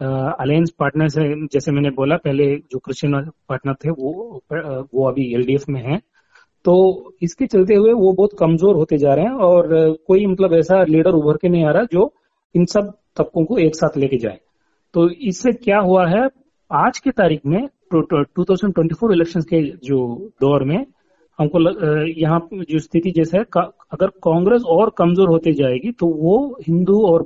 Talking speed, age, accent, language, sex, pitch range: 175 wpm, 30-49, native, Hindi, male, 145-185 Hz